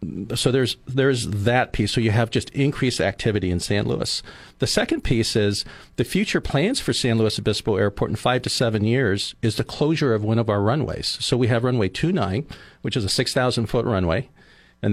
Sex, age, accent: male, 50-69, American